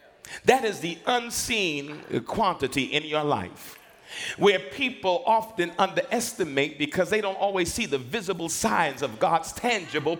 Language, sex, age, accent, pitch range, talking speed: English, male, 50-69, American, 165-250 Hz, 135 wpm